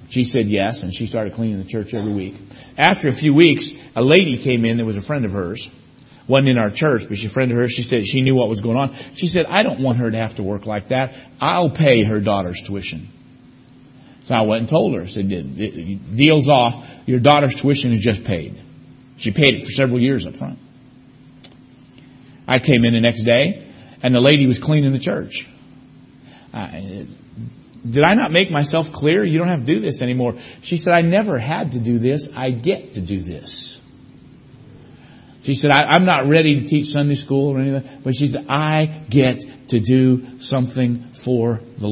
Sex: male